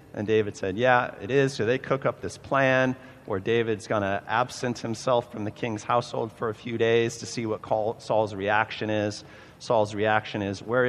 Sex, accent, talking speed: male, American, 200 wpm